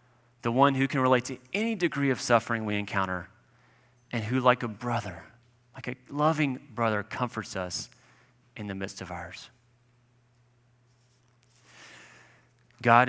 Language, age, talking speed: English, 30-49, 135 wpm